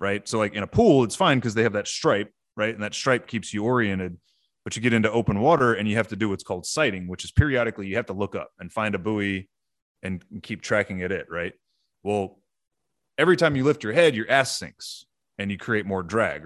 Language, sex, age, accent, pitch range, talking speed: English, male, 30-49, American, 95-115 Hz, 245 wpm